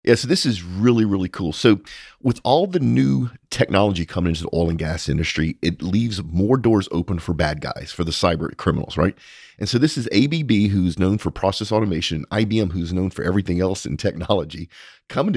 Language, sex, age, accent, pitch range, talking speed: English, male, 40-59, American, 85-105 Hz, 205 wpm